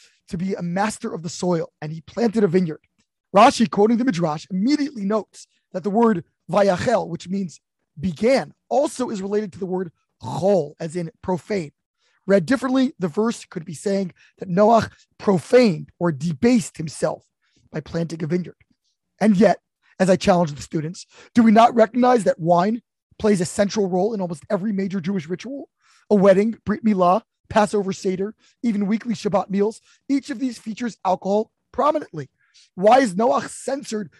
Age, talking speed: 20-39, 165 wpm